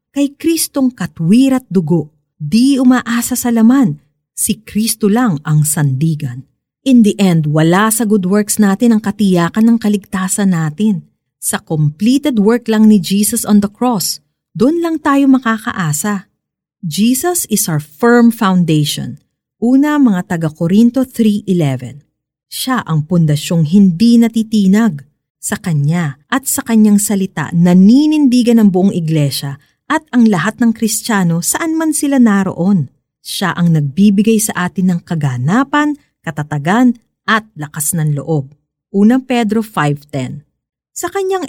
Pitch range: 155-235 Hz